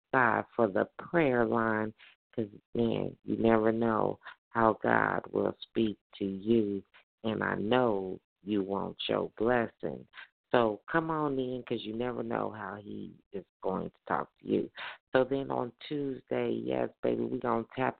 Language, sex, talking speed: English, female, 160 wpm